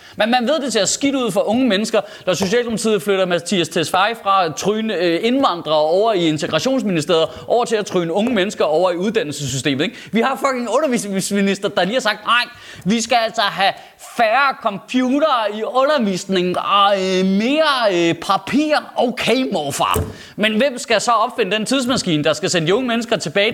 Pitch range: 200-275 Hz